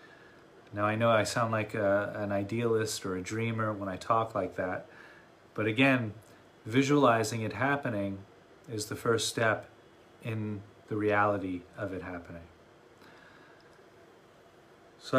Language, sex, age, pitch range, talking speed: English, male, 30-49, 105-140 Hz, 125 wpm